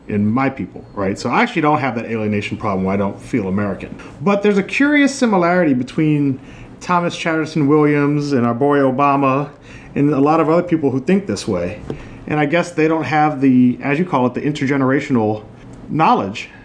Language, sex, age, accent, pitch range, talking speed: English, male, 30-49, American, 125-175 Hz, 195 wpm